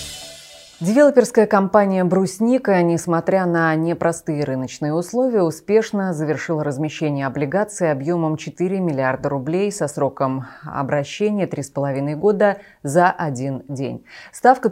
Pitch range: 145-195 Hz